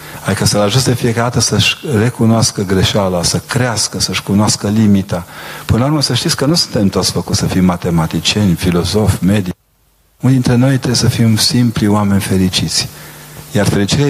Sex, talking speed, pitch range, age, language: male, 165 wpm, 95-125 Hz, 40-59, Romanian